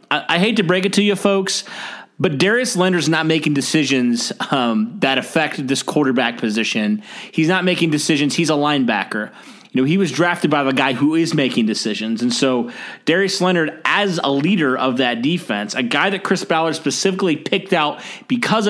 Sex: male